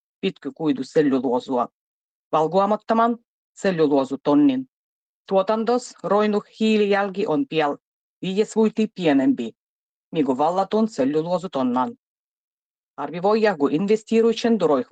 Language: Finnish